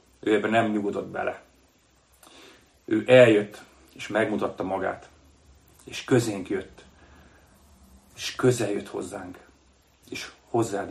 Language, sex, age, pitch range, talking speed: Hungarian, male, 40-59, 95-125 Hz, 105 wpm